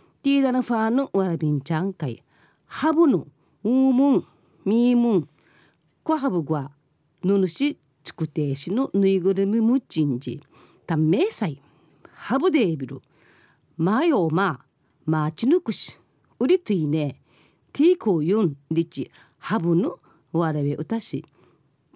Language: Japanese